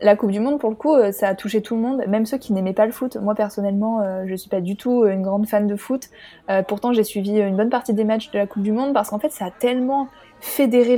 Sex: female